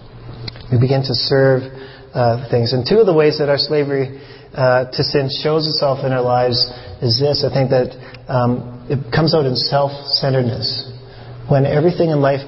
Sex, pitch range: male, 120-145 Hz